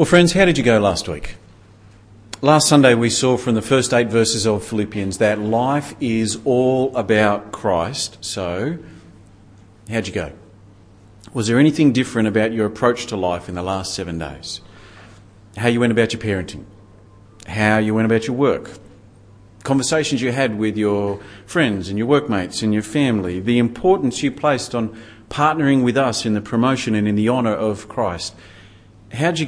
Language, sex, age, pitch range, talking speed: English, male, 40-59, 100-135 Hz, 175 wpm